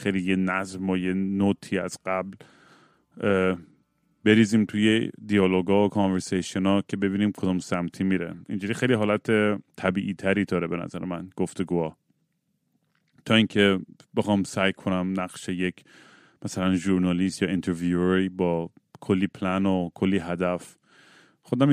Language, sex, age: Persian, male, 30-49